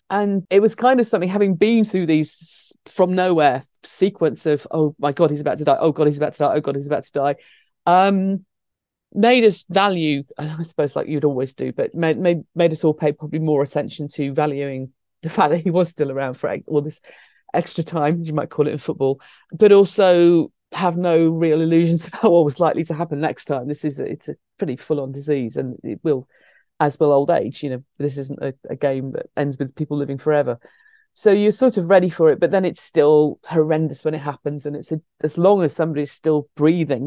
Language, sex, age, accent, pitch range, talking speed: English, female, 40-59, British, 145-190 Hz, 225 wpm